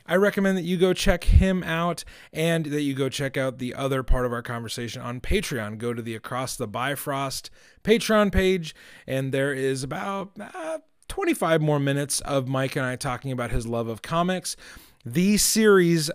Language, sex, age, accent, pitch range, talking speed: English, male, 30-49, American, 125-170 Hz, 185 wpm